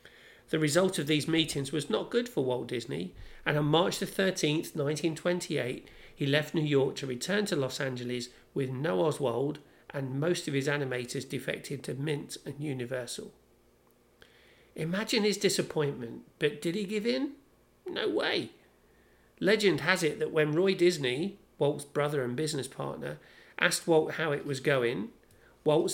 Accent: British